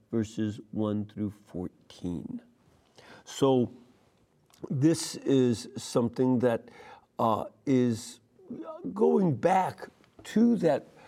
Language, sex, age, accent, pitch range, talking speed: English, male, 50-69, American, 115-165 Hz, 80 wpm